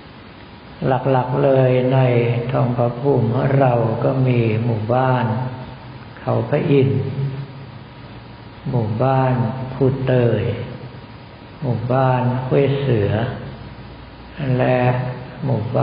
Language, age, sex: Thai, 60-79, male